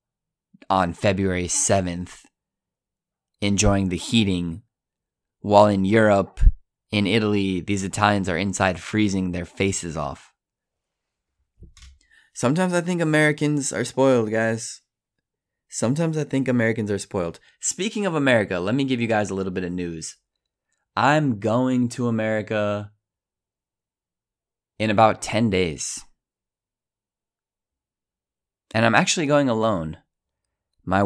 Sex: male